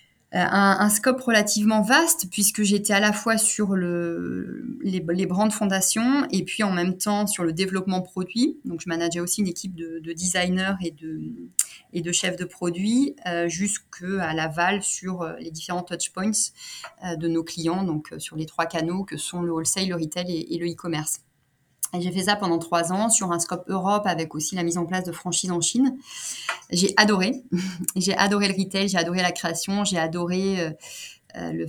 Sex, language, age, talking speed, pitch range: female, French, 30-49, 195 wpm, 170-195 Hz